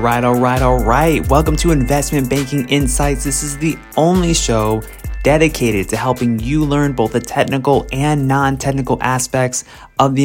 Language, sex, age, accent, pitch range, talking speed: English, male, 20-39, American, 100-125 Hz, 175 wpm